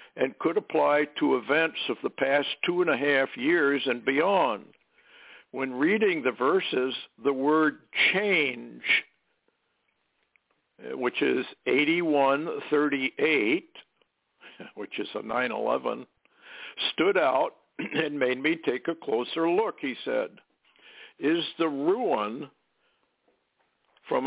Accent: American